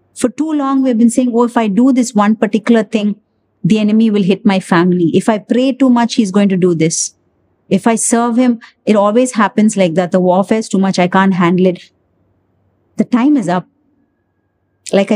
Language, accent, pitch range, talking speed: English, Indian, 175-225 Hz, 210 wpm